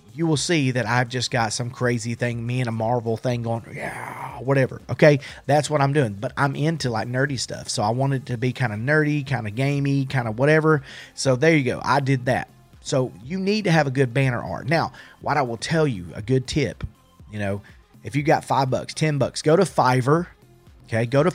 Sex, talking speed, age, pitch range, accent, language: male, 235 wpm, 30-49, 125-150 Hz, American, English